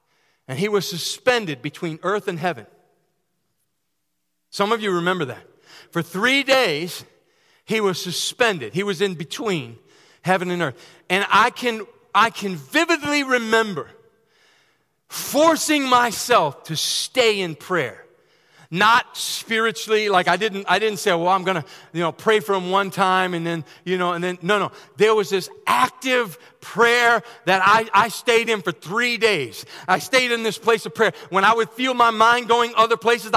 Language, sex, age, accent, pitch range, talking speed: English, male, 40-59, American, 190-245 Hz, 170 wpm